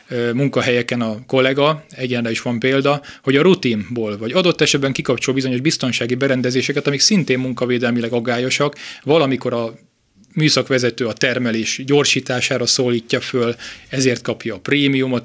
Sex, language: male, Hungarian